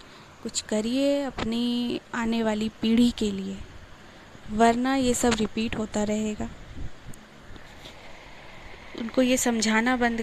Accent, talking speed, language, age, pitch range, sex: native, 105 wpm, Hindi, 20-39, 210-240 Hz, female